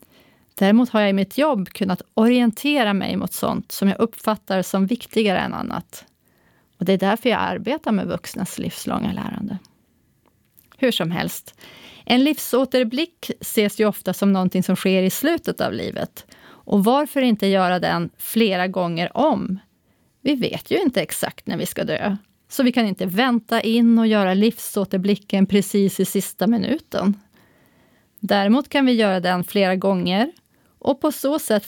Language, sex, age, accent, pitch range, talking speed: Swedish, female, 30-49, native, 195-235 Hz, 160 wpm